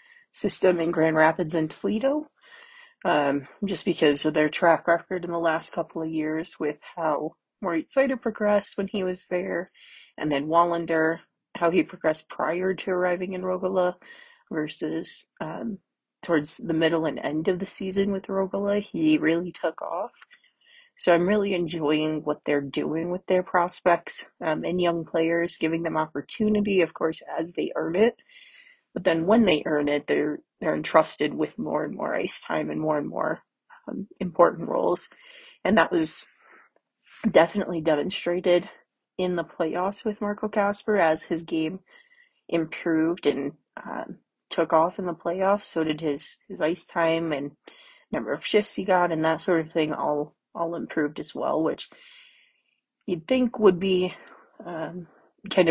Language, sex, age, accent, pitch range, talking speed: English, female, 30-49, American, 160-200 Hz, 165 wpm